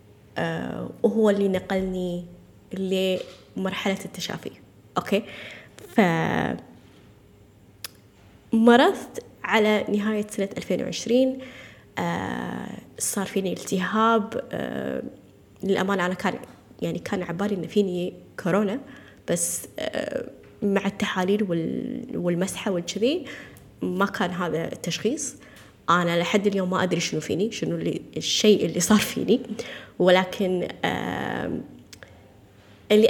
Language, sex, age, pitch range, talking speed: Arabic, female, 20-39, 180-230 Hz, 90 wpm